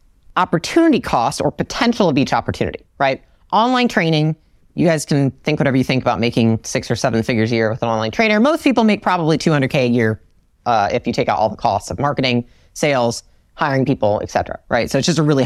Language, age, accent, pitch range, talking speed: English, 40-59, American, 130-200 Hz, 220 wpm